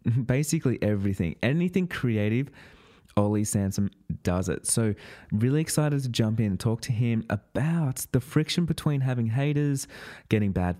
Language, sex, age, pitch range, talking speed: English, male, 20-39, 100-120 Hz, 145 wpm